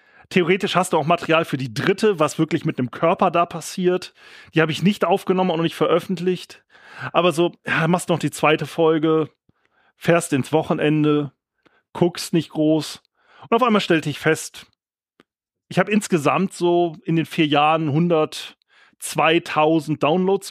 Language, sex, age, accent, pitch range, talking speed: German, male, 30-49, German, 150-185 Hz, 160 wpm